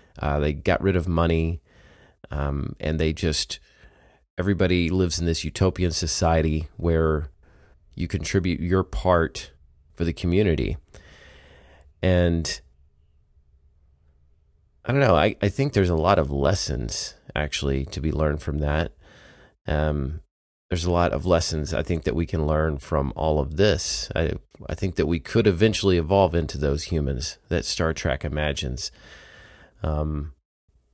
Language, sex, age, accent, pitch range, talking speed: English, male, 30-49, American, 75-90 Hz, 145 wpm